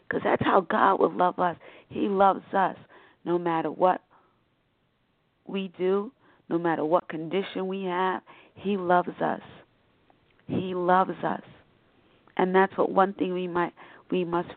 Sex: female